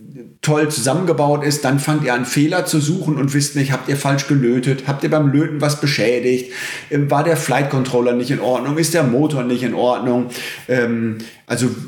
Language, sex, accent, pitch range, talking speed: German, male, German, 125-160 Hz, 190 wpm